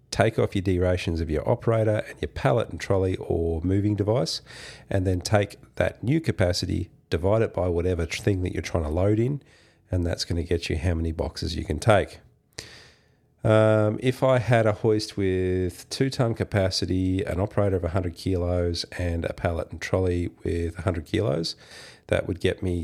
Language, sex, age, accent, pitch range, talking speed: English, male, 40-59, Australian, 85-105 Hz, 185 wpm